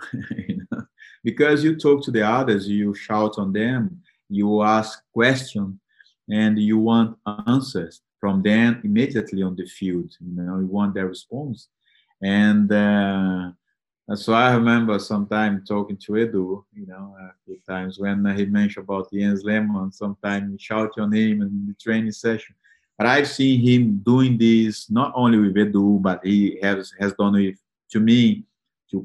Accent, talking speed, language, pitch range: Brazilian, 165 wpm, English, 100-120 Hz